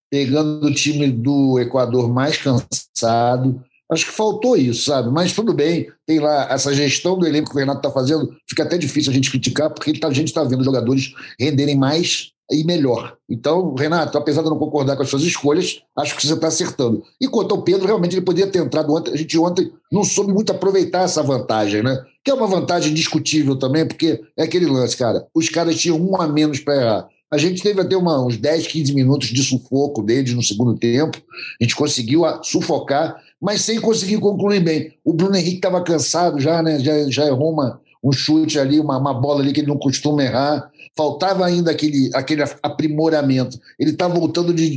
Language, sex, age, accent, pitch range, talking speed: Portuguese, male, 60-79, Brazilian, 135-165 Hz, 205 wpm